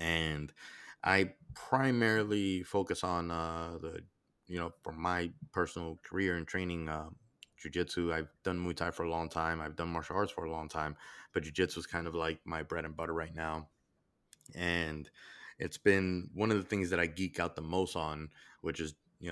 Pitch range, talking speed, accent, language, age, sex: 80-95 Hz, 195 wpm, American, English, 20-39, male